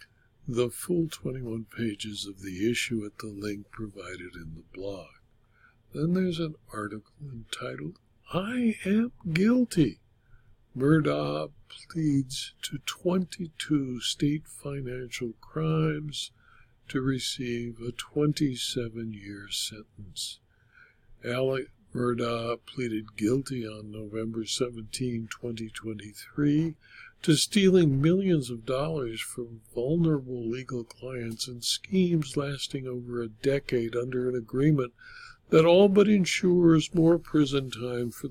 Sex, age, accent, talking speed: male, 60-79, American, 105 wpm